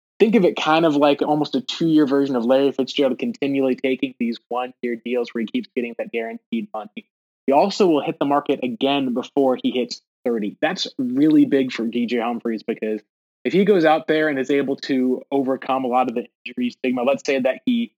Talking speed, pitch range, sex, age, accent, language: 210 wpm, 125-155 Hz, male, 20-39, American, English